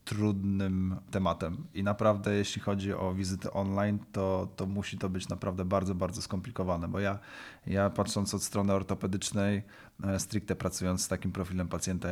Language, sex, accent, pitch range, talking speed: Polish, male, native, 90-100 Hz, 155 wpm